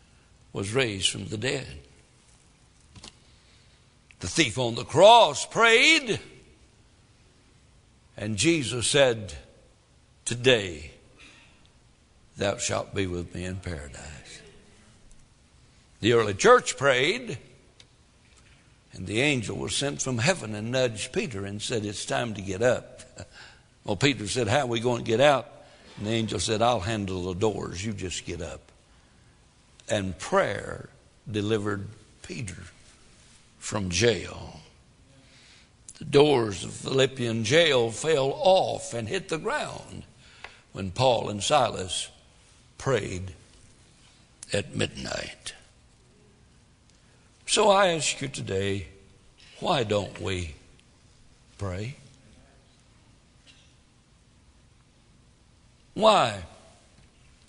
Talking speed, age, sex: 105 wpm, 60-79, male